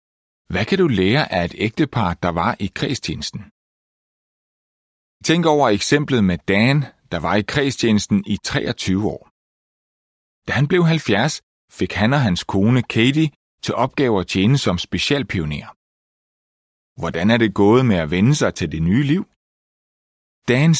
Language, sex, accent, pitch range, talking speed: Danish, male, native, 95-140 Hz, 150 wpm